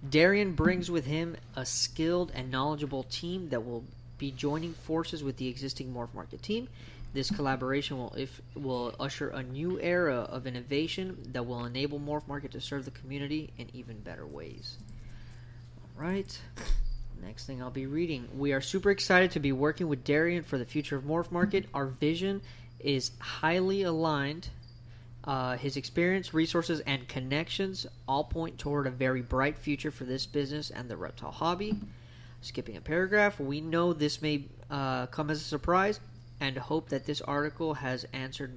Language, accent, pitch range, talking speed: English, American, 120-160 Hz, 170 wpm